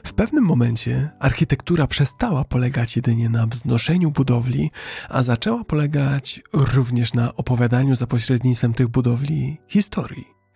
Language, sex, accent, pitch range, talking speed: Polish, male, native, 120-140 Hz, 120 wpm